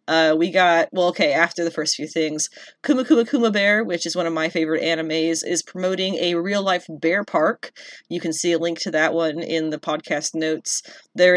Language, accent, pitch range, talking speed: English, American, 165-200 Hz, 210 wpm